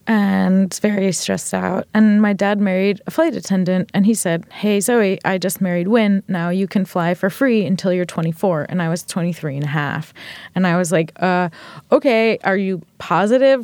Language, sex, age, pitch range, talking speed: English, female, 20-39, 190-265 Hz, 200 wpm